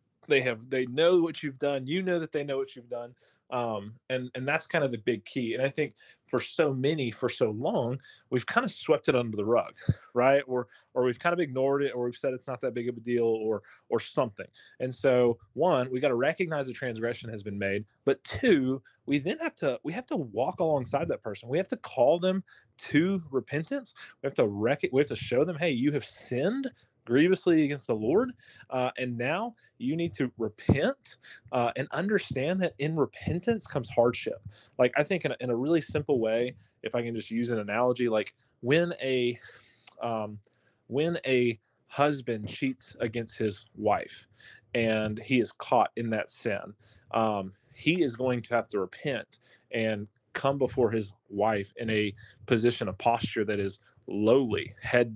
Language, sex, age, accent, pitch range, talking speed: English, male, 20-39, American, 110-145 Hz, 200 wpm